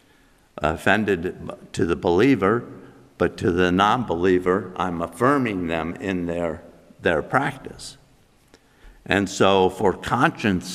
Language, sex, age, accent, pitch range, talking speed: English, male, 60-79, American, 90-115 Hz, 105 wpm